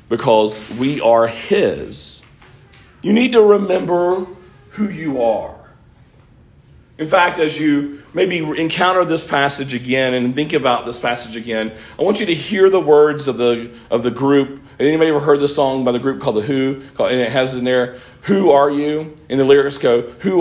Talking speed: 180 wpm